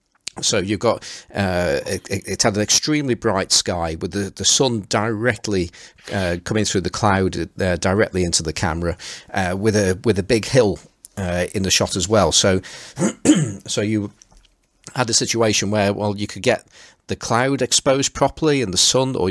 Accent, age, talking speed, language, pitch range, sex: British, 40-59, 180 wpm, English, 90-110 Hz, male